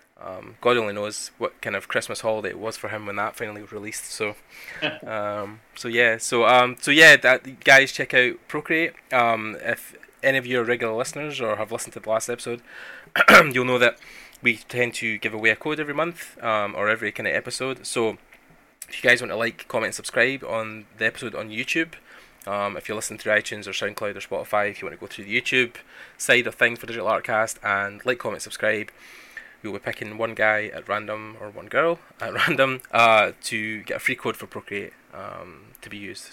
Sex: male